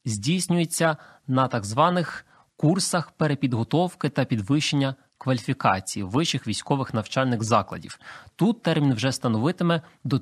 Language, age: Ukrainian, 20-39